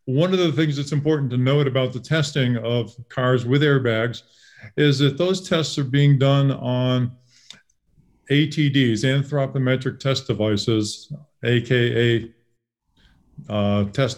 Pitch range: 120-140 Hz